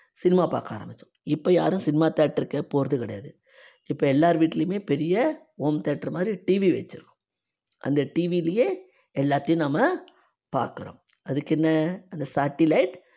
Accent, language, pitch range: native, Tamil, 140-190 Hz